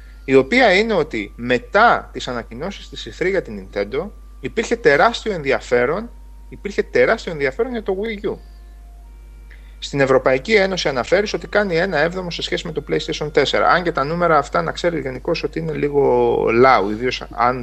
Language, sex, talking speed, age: Greek, male, 170 wpm, 30-49